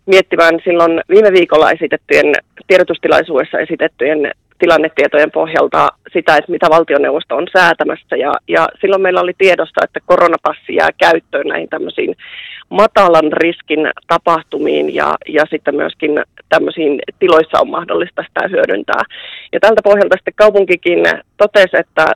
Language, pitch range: Finnish, 160-210 Hz